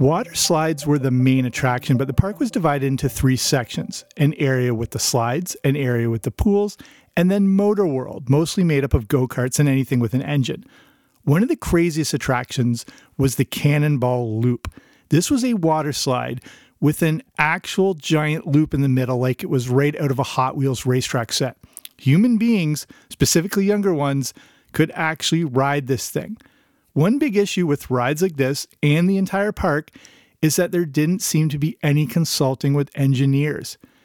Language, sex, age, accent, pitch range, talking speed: English, male, 40-59, American, 135-170 Hz, 180 wpm